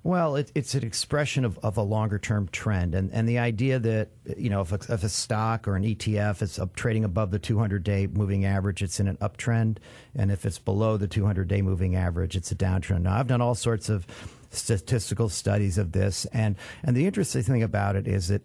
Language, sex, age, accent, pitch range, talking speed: English, male, 50-69, American, 100-120 Hz, 220 wpm